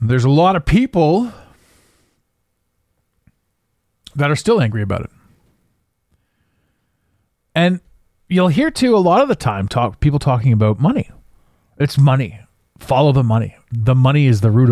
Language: English